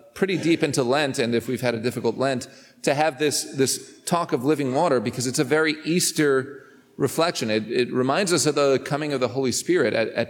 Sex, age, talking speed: male, 40-59, 220 wpm